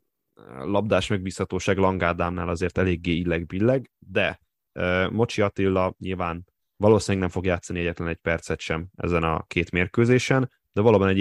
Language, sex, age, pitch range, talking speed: Hungarian, male, 10-29, 85-105 Hz, 135 wpm